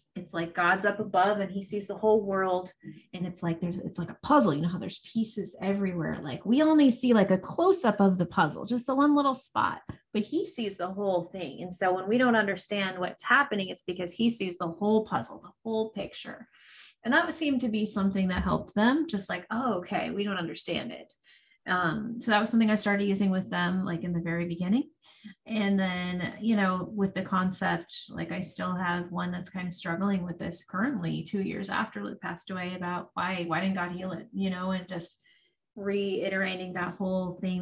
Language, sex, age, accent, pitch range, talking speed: English, female, 30-49, American, 175-215 Hz, 220 wpm